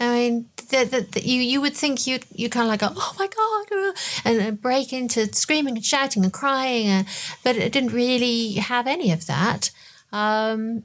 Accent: British